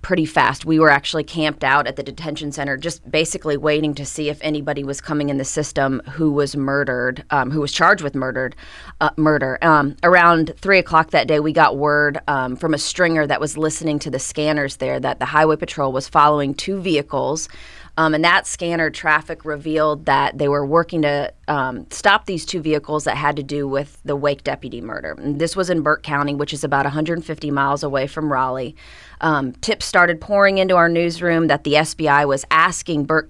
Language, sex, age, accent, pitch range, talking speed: English, female, 30-49, American, 145-165 Hz, 205 wpm